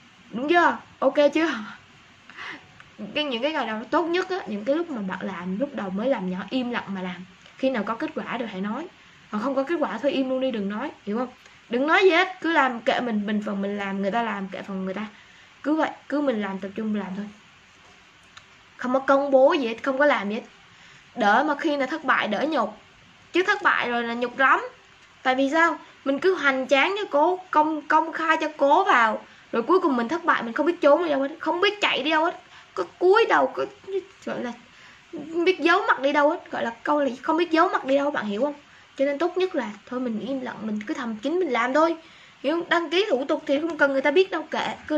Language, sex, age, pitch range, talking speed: Vietnamese, female, 20-39, 225-310 Hz, 260 wpm